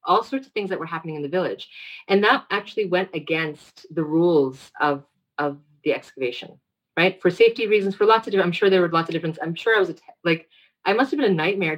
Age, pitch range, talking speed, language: 30-49, 150-190 Hz, 245 wpm, English